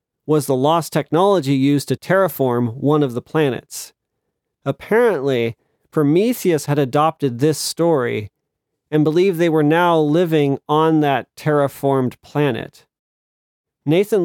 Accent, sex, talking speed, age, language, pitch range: American, male, 120 wpm, 40-59, English, 130-165 Hz